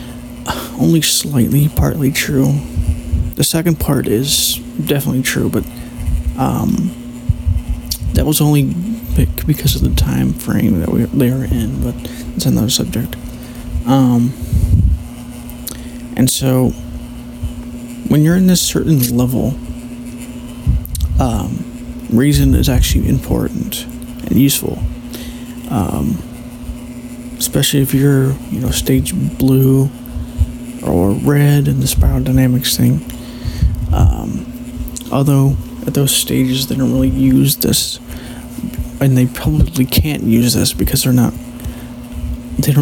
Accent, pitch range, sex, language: American, 85-130 Hz, male, English